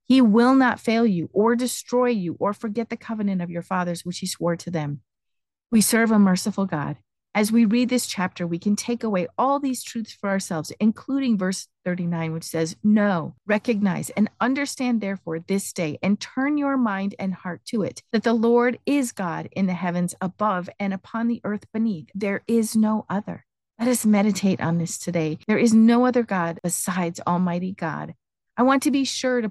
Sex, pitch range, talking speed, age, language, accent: female, 175-235 Hz, 195 wpm, 40-59, English, American